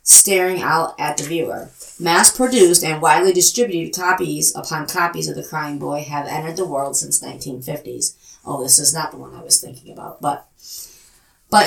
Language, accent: English, American